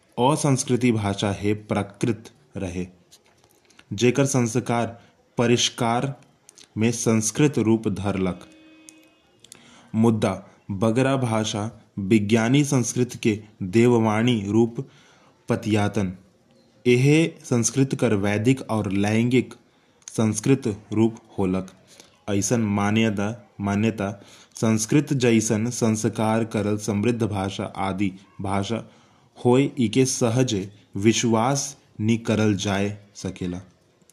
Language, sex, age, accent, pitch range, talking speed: Hindi, male, 20-39, native, 105-125 Hz, 85 wpm